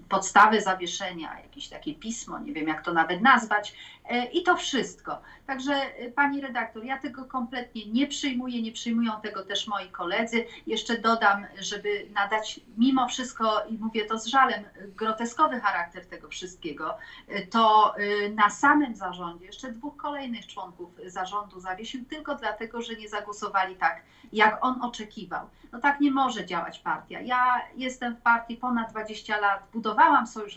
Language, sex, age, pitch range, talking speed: Polish, female, 40-59, 210-255 Hz, 150 wpm